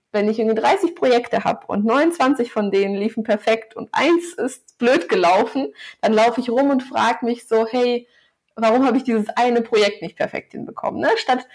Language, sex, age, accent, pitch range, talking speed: German, female, 20-39, German, 215-250 Hz, 190 wpm